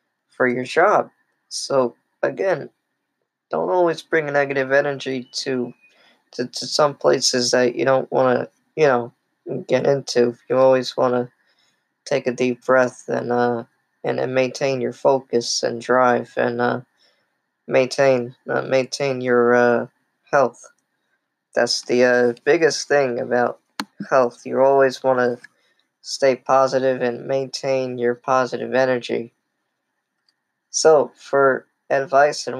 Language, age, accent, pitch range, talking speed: English, 10-29, American, 125-140 Hz, 130 wpm